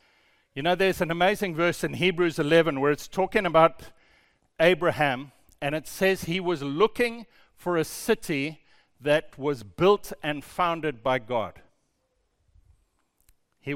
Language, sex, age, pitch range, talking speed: English, male, 50-69, 155-215 Hz, 135 wpm